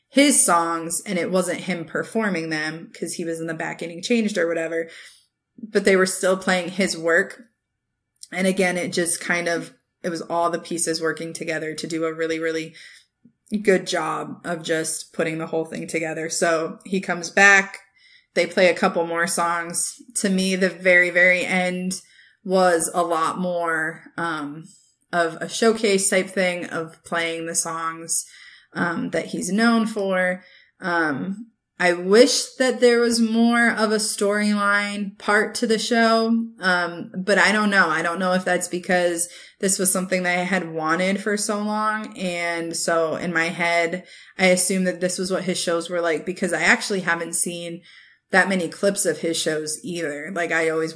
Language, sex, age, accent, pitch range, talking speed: English, female, 20-39, American, 165-195 Hz, 180 wpm